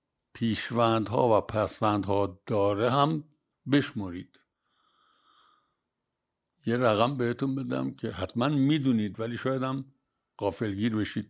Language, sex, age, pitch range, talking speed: Persian, male, 60-79, 120-160 Hz, 100 wpm